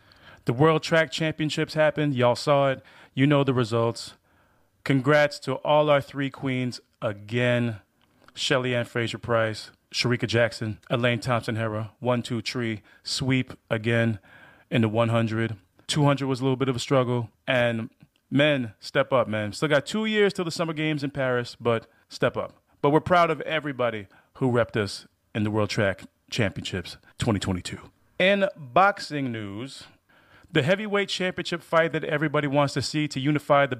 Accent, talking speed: American, 155 wpm